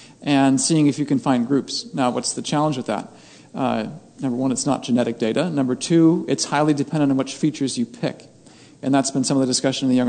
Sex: male